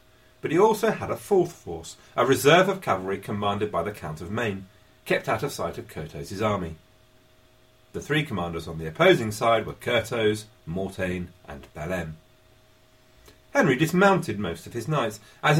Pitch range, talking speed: 90-130 Hz, 165 wpm